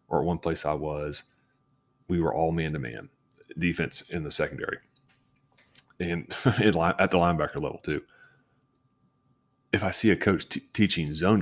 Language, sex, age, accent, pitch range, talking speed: English, male, 30-49, American, 75-100 Hz, 145 wpm